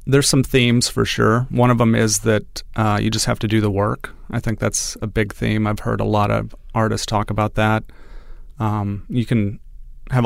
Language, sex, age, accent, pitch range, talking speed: English, male, 30-49, American, 100-115 Hz, 215 wpm